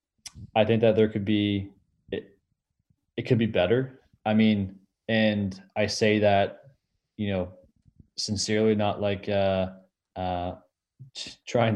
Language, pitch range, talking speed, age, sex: English, 95-110 Hz, 130 wpm, 20-39, male